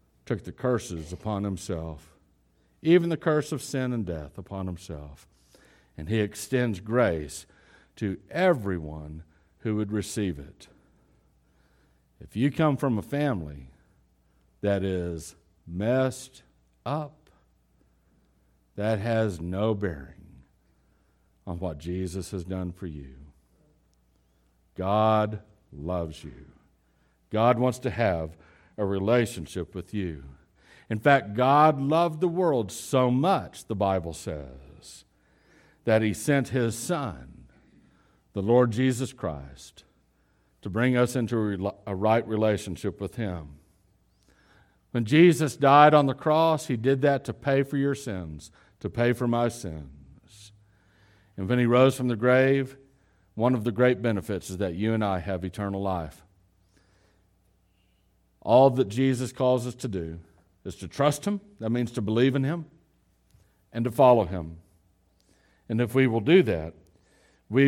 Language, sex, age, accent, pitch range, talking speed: English, male, 60-79, American, 85-125 Hz, 135 wpm